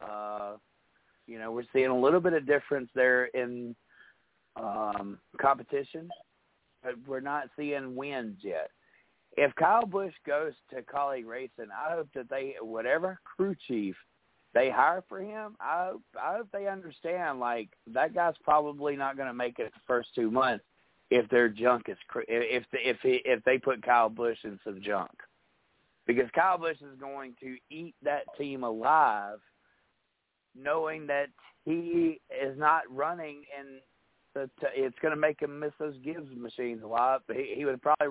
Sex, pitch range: male, 120-155 Hz